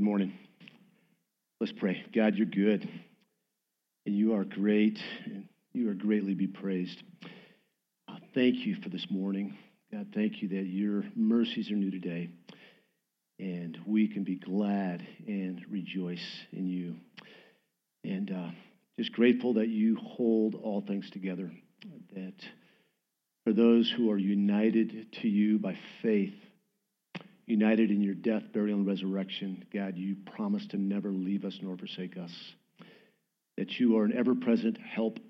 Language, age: English, 50-69